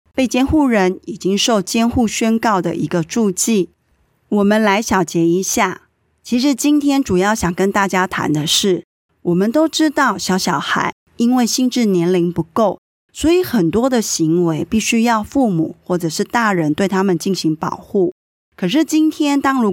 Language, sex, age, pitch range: Chinese, female, 20-39, 180-245 Hz